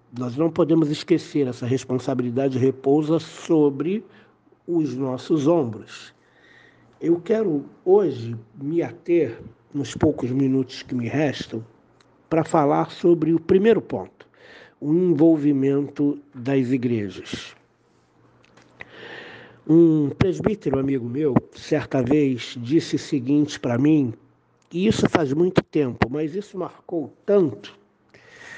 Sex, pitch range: male, 125-165 Hz